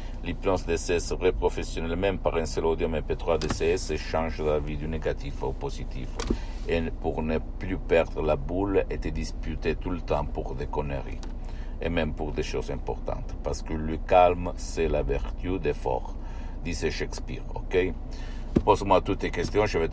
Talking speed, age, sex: 170 wpm, 60-79, male